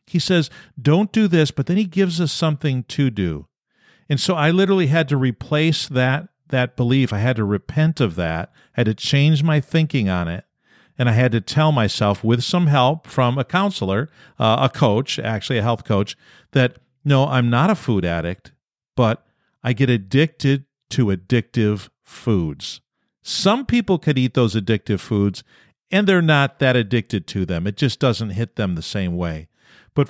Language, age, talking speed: English, 50-69, 185 wpm